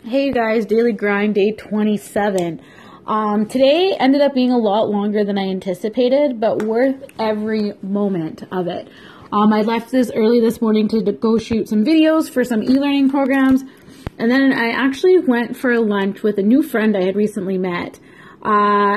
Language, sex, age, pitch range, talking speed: English, female, 20-39, 205-270 Hz, 175 wpm